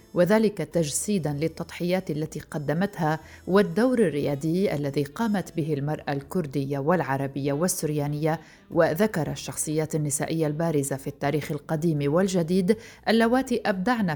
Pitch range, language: 150-185 Hz, Arabic